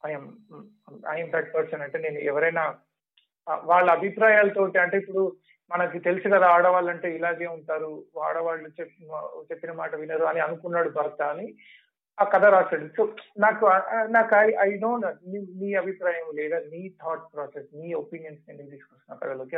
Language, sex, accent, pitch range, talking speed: Telugu, male, native, 160-195 Hz, 130 wpm